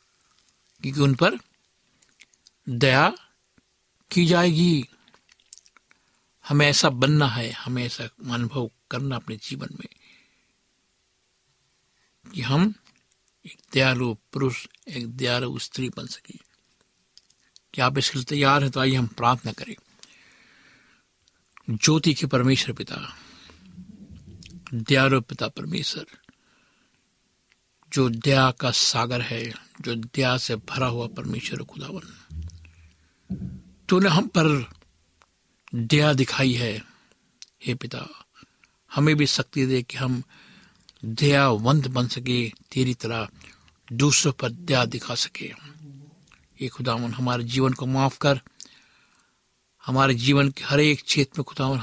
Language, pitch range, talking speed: Hindi, 120-140 Hz, 110 wpm